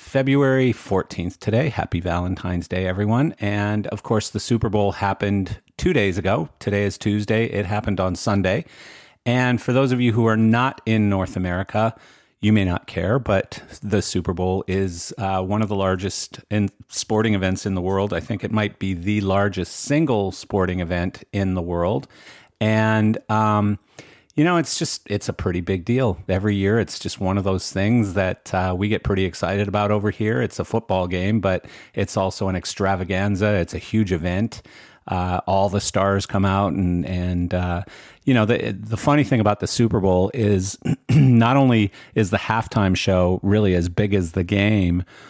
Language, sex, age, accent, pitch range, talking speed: English, male, 40-59, American, 95-110 Hz, 185 wpm